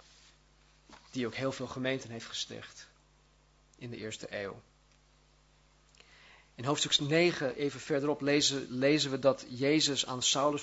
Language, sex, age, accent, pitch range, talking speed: Dutch, male, 40-59, Dutch, 140-180 Hz, 130 wpm